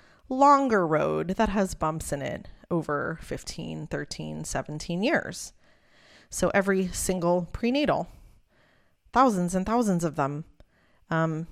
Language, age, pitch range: English, 30-49, 170-230 Hz